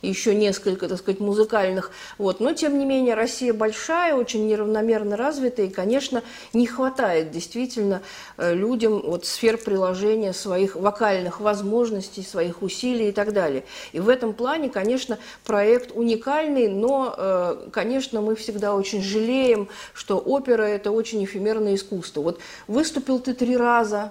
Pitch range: 195-245 Hz